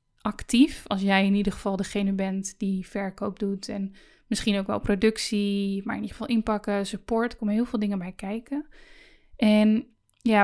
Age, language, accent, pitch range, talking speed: 10-29, Dutch, Dutch, 200-230 Hz, 180 wpm